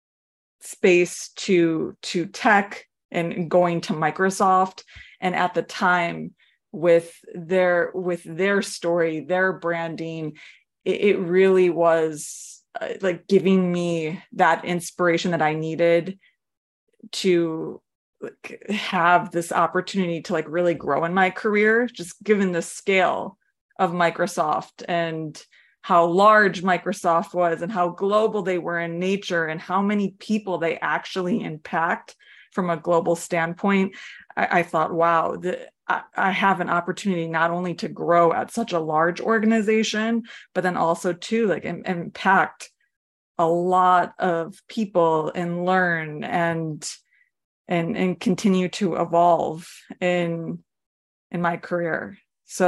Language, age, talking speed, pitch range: English, 20-39, 130 wpm, 170-190 Hz